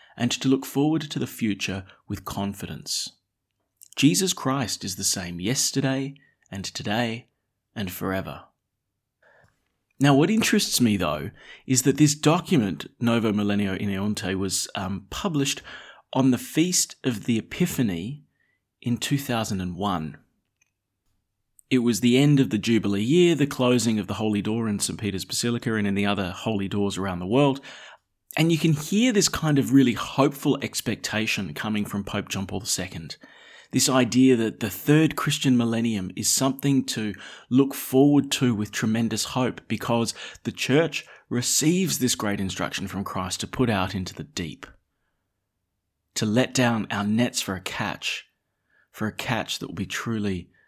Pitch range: 100-135 Hz